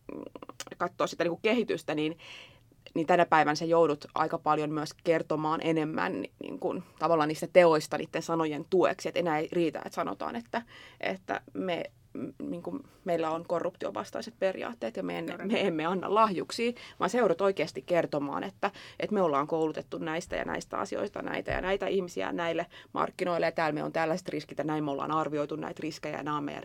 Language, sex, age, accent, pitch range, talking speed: Finnish, female, 20-39, native, 155-175 Hz, 175 wpm